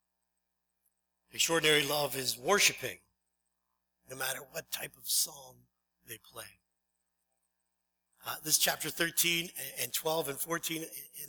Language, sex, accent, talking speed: English, male, American, 110 wpm